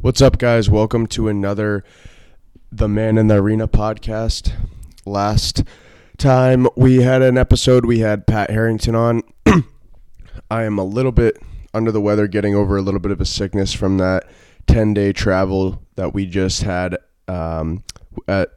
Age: 20-39